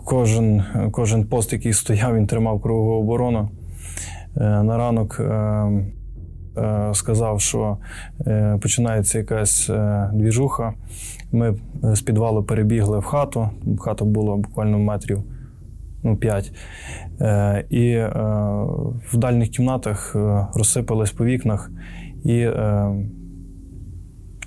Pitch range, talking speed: 105-120 Hz, 110 wpm